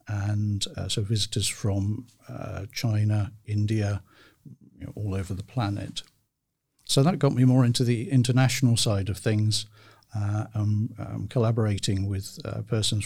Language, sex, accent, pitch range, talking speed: Finnish, male, British, 105-120 Hz, 140 wpm